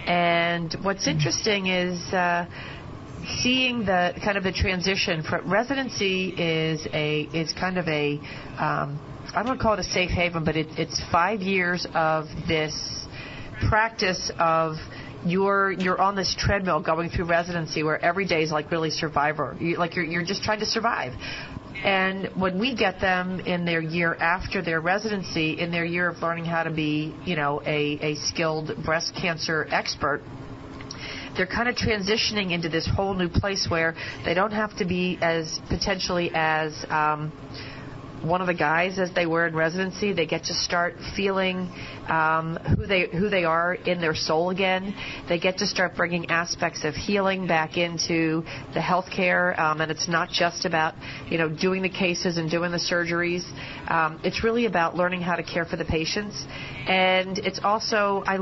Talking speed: 180 wpm